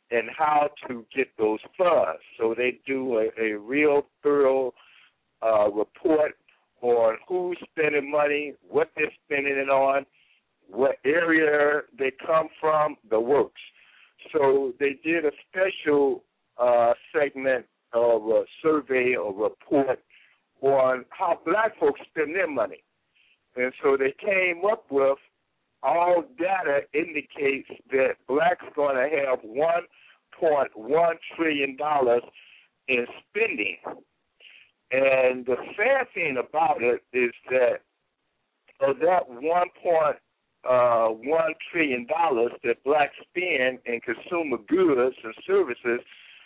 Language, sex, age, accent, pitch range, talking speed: English, male, 60-79, American, 125-210 Hz, 120 wpm